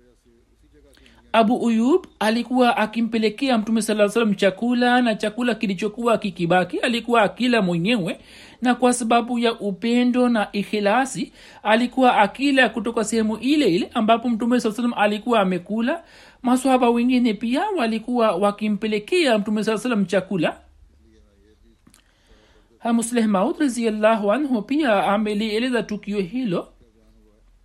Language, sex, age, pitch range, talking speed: Swahili, male, 60-79, 200-240 Hz, 110 wpm